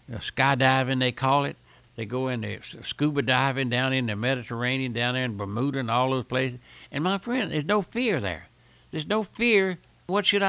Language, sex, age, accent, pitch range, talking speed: English, male, 60-79, American, 125-190 Hz, 195 wpm